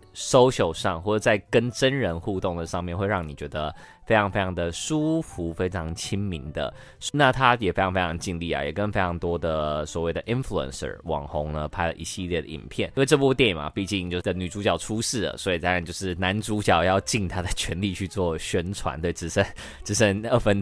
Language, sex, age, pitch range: Chinese, male, 20-39, 80-100 Hz